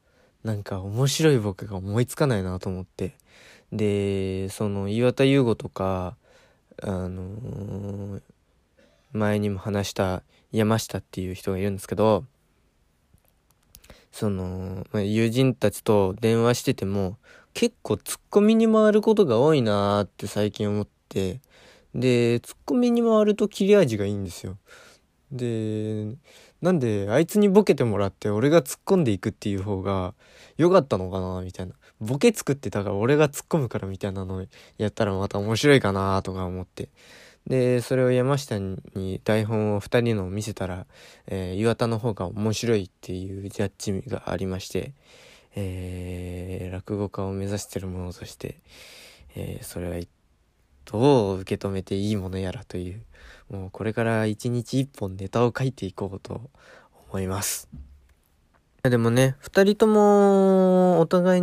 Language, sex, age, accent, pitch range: Japanese, male, 20-39, native, 95-130 Hz